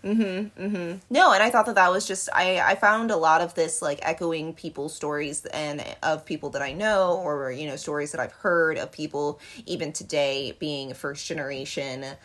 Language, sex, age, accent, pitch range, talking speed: English, female, 20-39, American, 140-170 Hz, 210 wpm